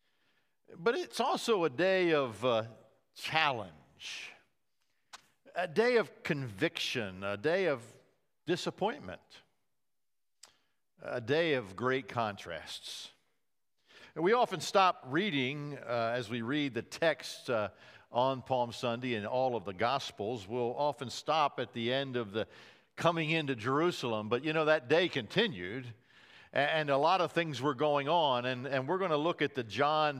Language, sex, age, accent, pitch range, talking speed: English, male, 60-79, American, 115-150 Hz, 145 wpm